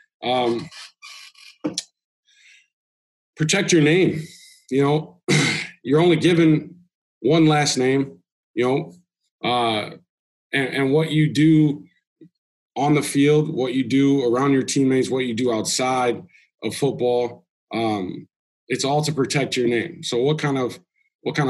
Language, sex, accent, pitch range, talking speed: English, male, American, 115-155 Hz, 135 wpm